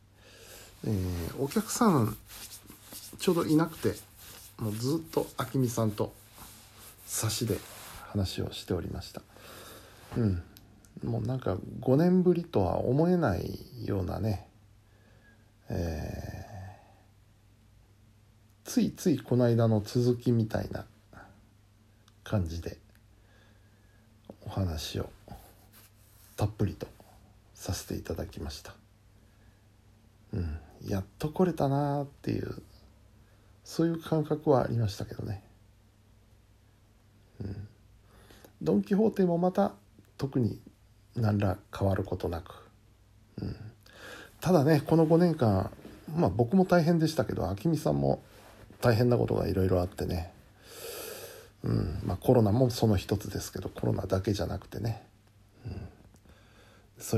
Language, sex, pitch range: Japanese, male, 100-115 Hz